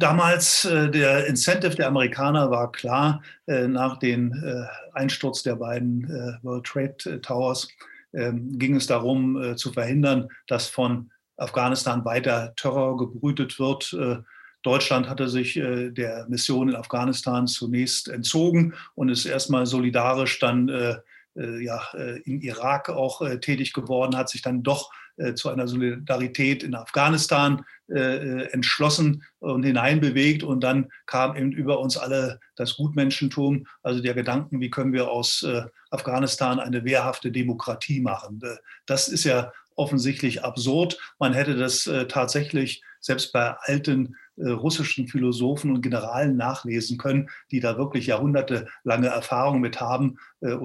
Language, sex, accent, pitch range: German, male, German, 125-140 Hz